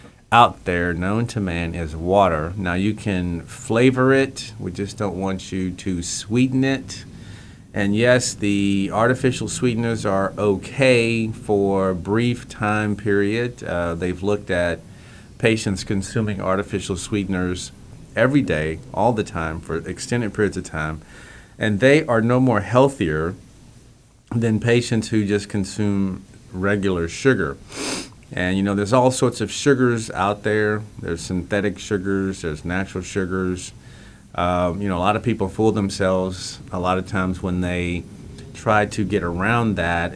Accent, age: American, 40-59